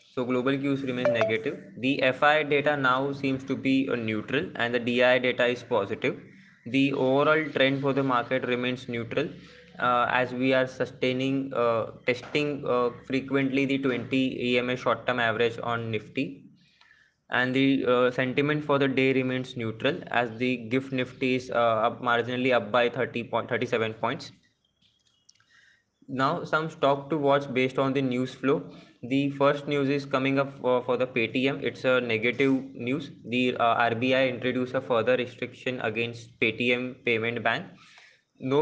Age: 20-39